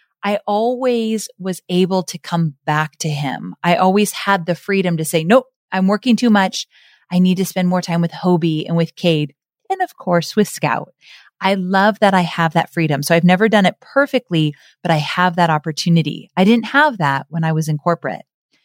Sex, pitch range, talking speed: female, 160-200 Hz, 205 wpm